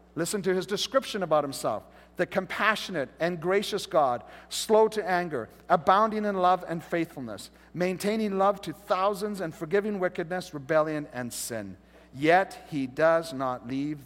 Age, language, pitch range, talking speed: 50-69, English, 150-205 Hz, 145 wpm